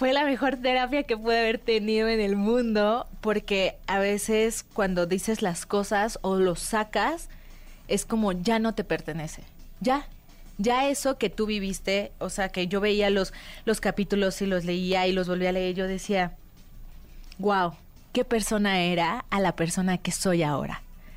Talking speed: 175 wpm